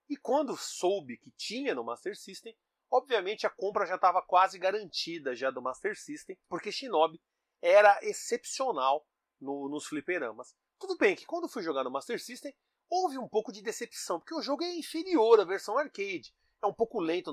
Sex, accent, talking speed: male, Brazilian, 175 wpm